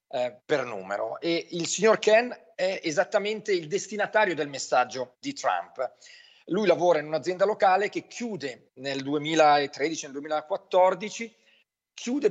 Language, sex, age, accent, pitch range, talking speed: Italian, male, 40-59, native, 150-200 Hz, 125 wpm